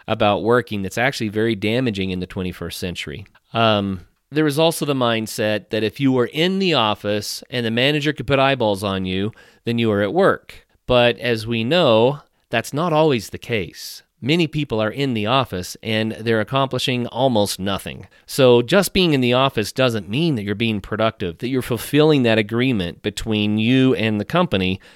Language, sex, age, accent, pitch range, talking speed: English, male, 40-59, American, 105-130 Hz, 190 wpm